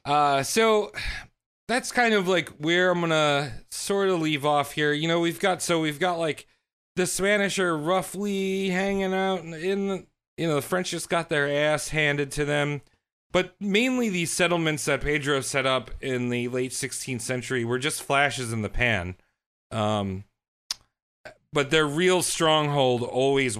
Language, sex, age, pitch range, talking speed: English, male, 40-59, 115-165 Hz, 170 wpm